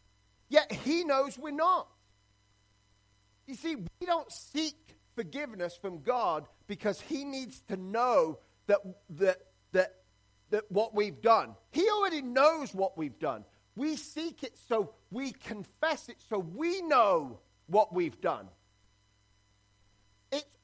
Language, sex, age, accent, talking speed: English, male, 40-59, British, 130 wpm